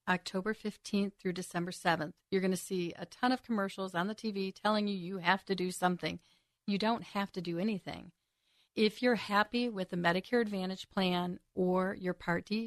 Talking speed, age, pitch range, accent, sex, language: 195 wpm, 40-59, 180-215 Hz, American, female, English